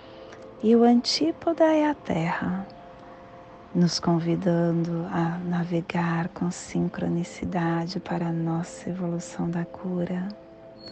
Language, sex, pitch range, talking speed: Portuguese, female, 165-190 Hz, 100 wpm